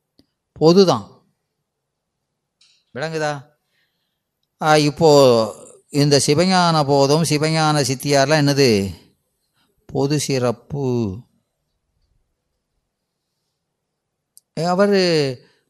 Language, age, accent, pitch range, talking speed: Tamil, 30-49, native, 125-160 Hz, 50 wpm